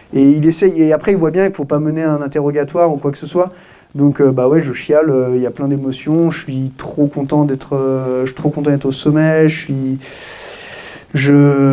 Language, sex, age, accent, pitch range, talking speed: French, male, 20-39, French, 125-145 Hz, 215 wpm